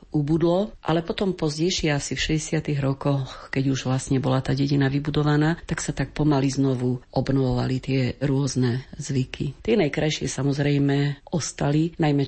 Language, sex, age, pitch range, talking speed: Slovak, female, 40-59, 135-160 Hz, 140 wpm